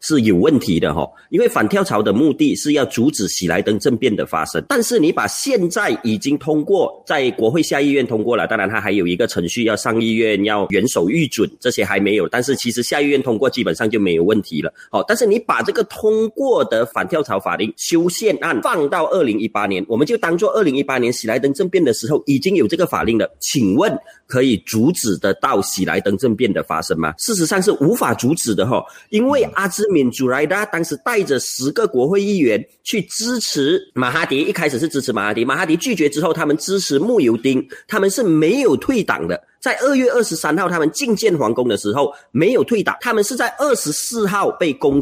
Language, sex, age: Chinese, male, 30-49